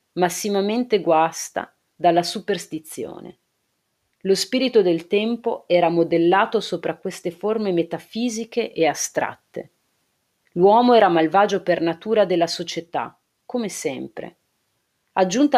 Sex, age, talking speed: female, 40-59, 100 wpm